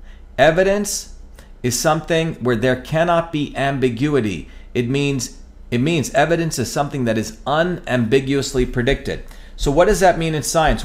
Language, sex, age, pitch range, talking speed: English, male, 40-59, 120-160 Hz, 145 wpm